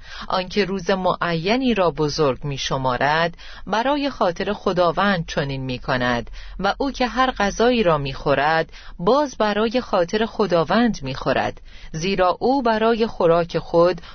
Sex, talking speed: female, 135 wpm